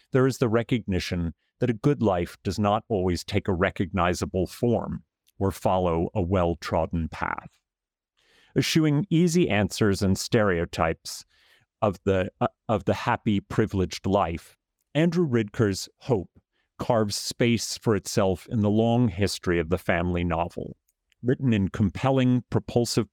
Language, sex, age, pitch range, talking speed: English, male, 40-59, 95-125 Hz, 135 wpm